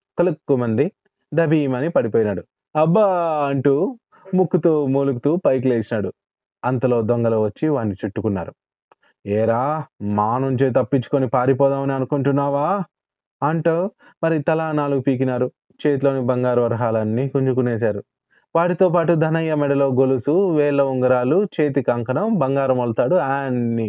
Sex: male